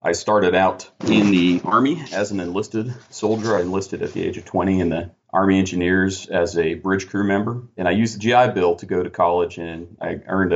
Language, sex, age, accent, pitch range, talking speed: English, male, 40-59, American, 90-110 Hz, 220 wpm